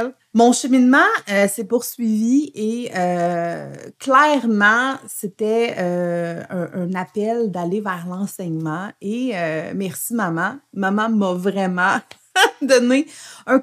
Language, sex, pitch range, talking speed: French, female, 185-250 Hz, 110 wpm